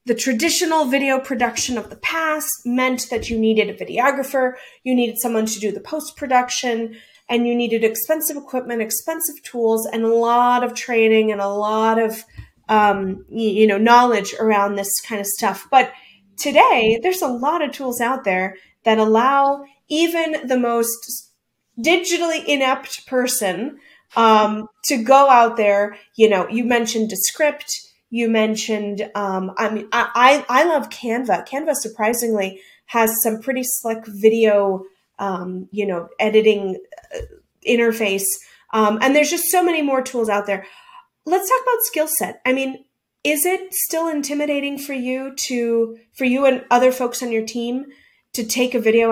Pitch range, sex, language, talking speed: 220-275 Hz, female, English, 160 wpm